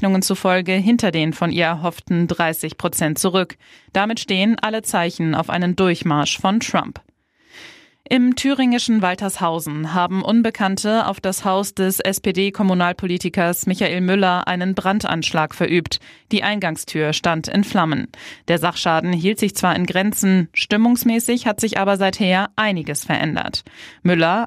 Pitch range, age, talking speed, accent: 170-205 Hz, 20-39, 130 wpm, German